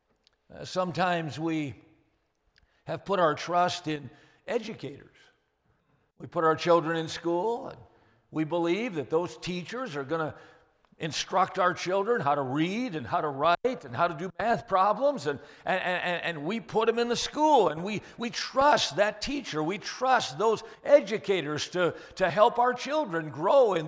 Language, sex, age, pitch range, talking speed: English, male, 60-79, 155-215 Hz, 165 wpm